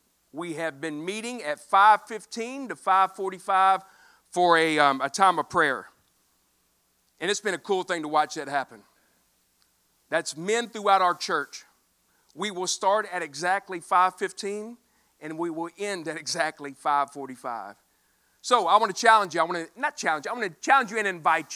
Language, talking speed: English, 175 wpm